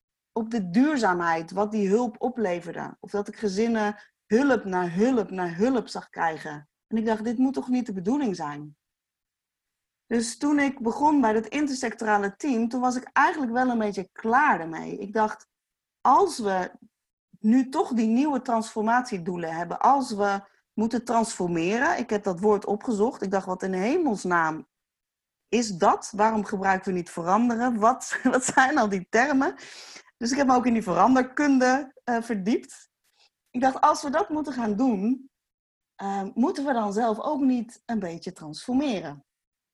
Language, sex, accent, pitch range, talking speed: Dutch, female, Dutch, 195-255 Hz, 165 wpm